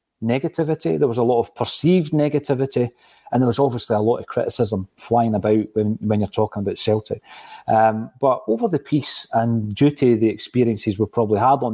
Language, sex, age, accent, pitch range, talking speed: English, male, 30-49, British, 110-135 Hz, 195 wpm